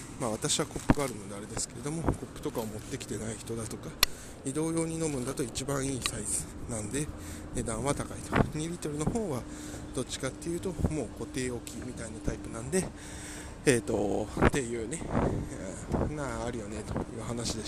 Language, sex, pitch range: Japanese, male, 105-130 Hz